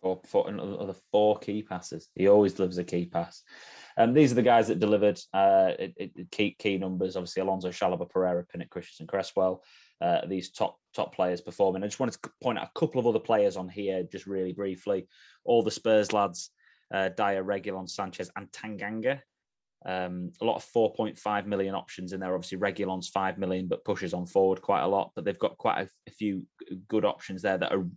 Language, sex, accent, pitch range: English, male, British, 95-110 Hz